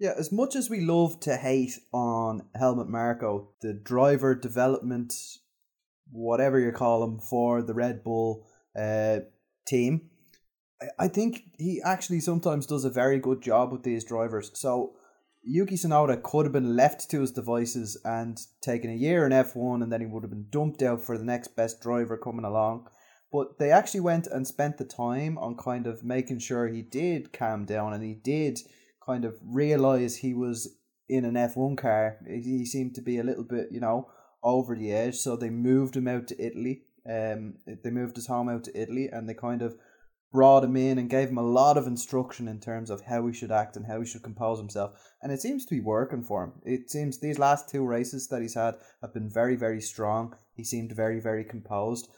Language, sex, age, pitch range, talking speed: English, male, 20-39, 115-135 Hz, 205 wpm